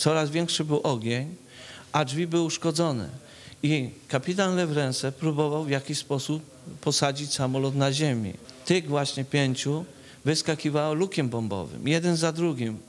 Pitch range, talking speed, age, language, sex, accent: 130-155 Hz, 130 wpm, 40-59, Polish, male, native